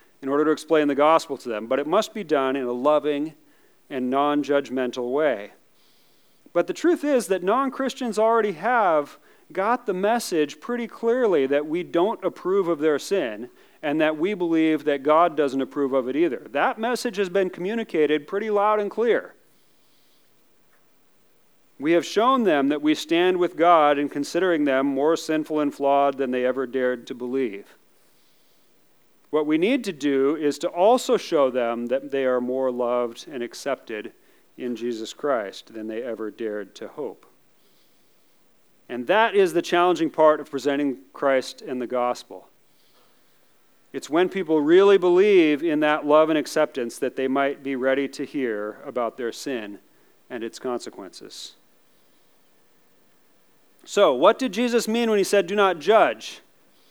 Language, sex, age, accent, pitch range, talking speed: English, male, 40-59, American, 135-200 Hz, 165 wpm